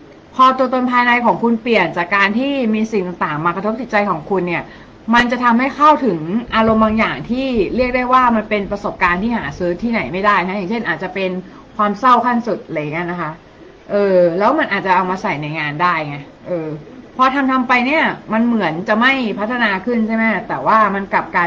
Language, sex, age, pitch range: Thai, female, 20-39, 185-240 Hz